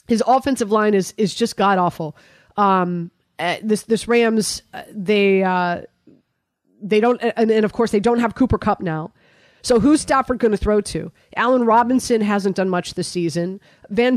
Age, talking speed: 30-49, 170 wpm